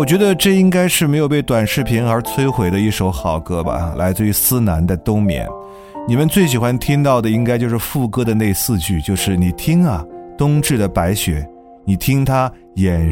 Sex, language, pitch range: male, Chinese, 90-140 Hz